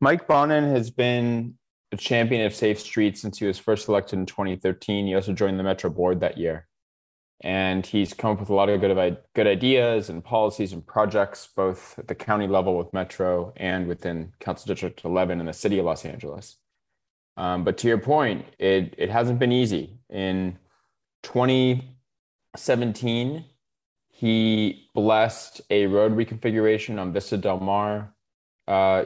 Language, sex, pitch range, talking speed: English, male, 95-110 Hz, 160 wpm